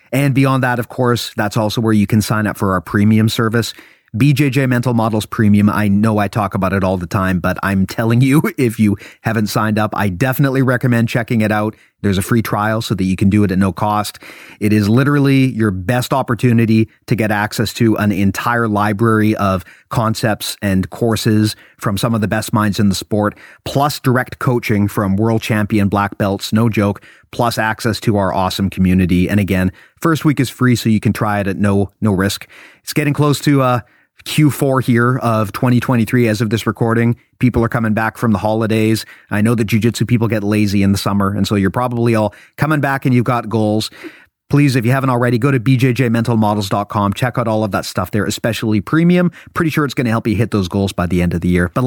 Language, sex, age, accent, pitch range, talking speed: English, male, 30-49, American, 105-125 Hz, 220 wpm